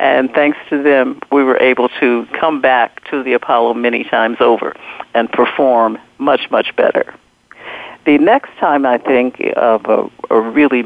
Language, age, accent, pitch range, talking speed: English, 50-69, American, 120-145 Hz, 165 wpm